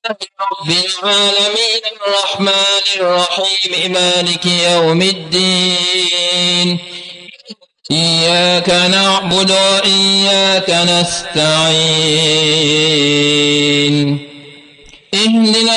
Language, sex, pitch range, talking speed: English, male, 160-205 Hz, 45 wpm